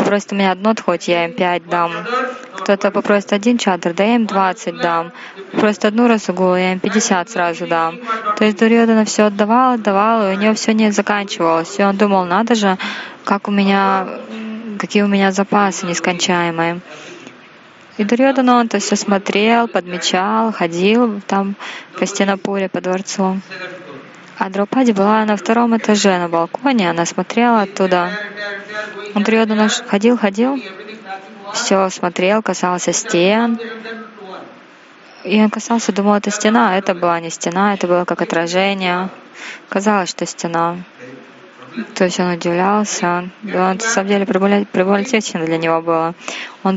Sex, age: female, 20-39